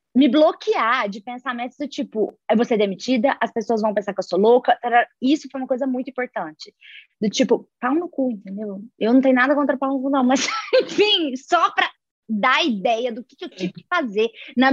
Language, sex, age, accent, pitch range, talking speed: Portuguese, female, 20-39, Brazilian, 240-305 Hz, 215 wpm